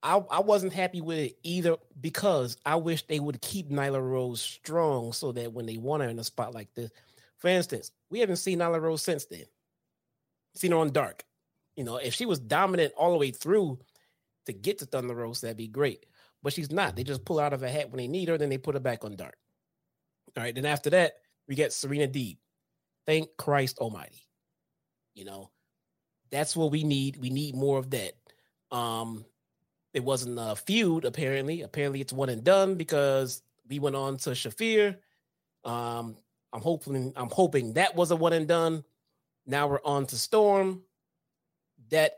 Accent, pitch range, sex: American, 125-170 Hz, male